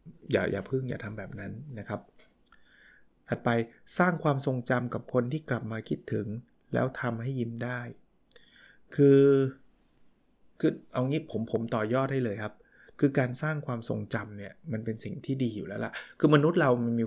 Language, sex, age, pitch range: Thai, male, 20-39, 115-140 Hz